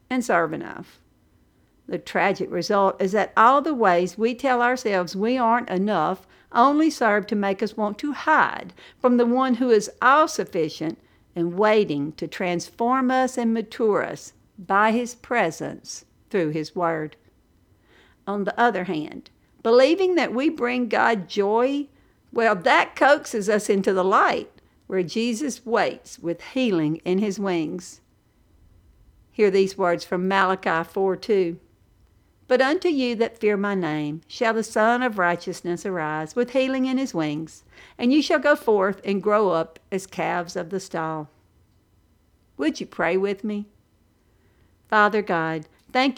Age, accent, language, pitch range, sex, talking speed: 50-69, American, English, 170-235 Hz, female, 150 wpm